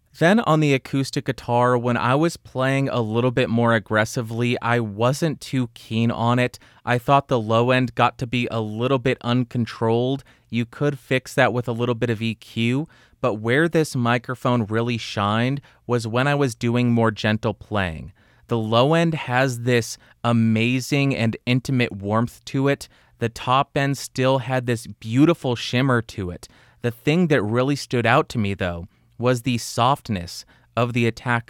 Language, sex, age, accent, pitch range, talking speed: English, male, 30-49, American, 110-125 Hz, 175 wpm